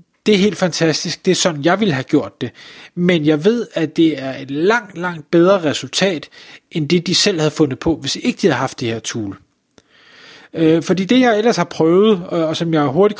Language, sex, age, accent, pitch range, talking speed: Danish, male, 30-49, native, 155-205 Hz, 220 wpm